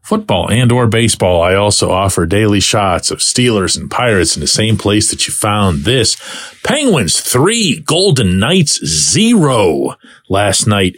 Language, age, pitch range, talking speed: English, 40-59, 95-125 Hz, 155 wpm